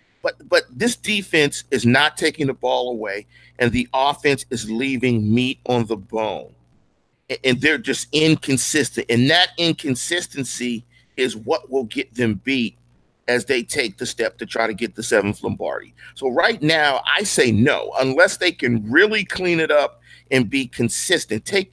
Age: 50-69